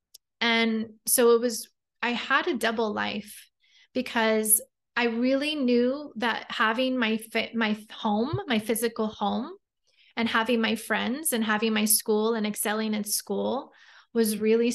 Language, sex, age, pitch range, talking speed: English, female, 20-39, 210-235 Hz, 145 wpm